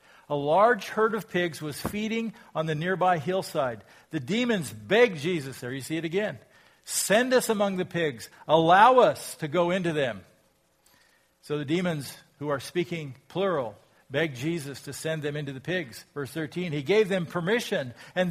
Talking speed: 175 wpm